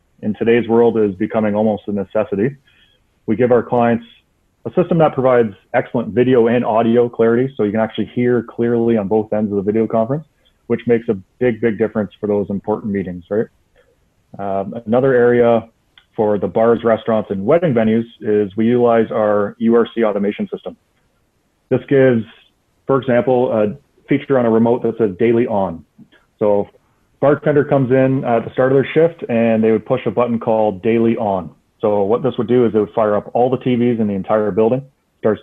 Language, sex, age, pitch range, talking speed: English, male, 30-49, 105-125 Hz, 190 wpm